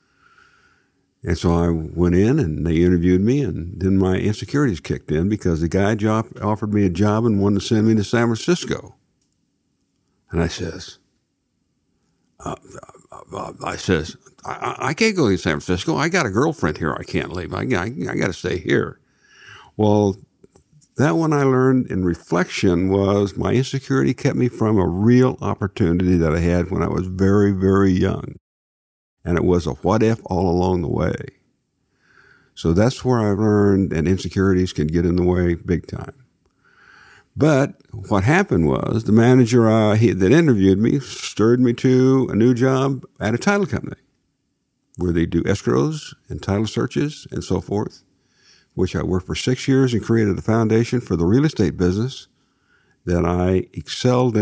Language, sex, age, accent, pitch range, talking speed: English, male, 60-79, American, 90-125 Hz, 175 wpm